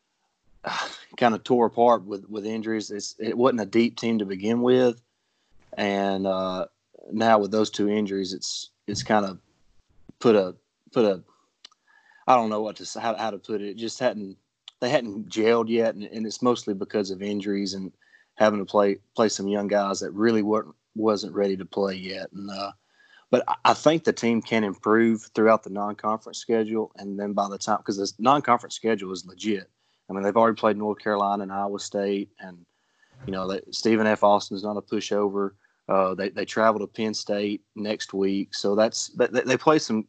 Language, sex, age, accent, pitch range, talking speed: English, male, 30-49, American, 100-115 Hz, 200 wpm